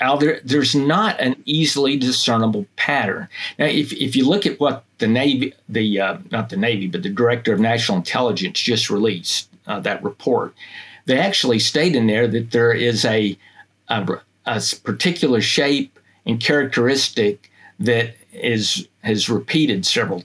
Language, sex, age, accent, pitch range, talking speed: English, male, 50-69, American, 110-140 Hz, 155 wpm